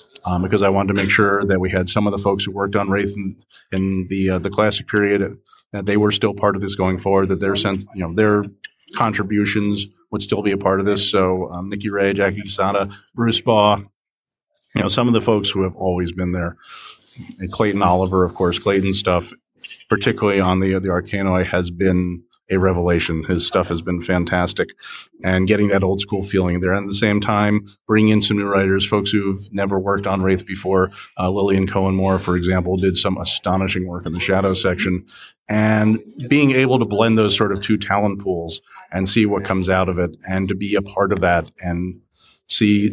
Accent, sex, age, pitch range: American, male, 40-59, 95-105 Hz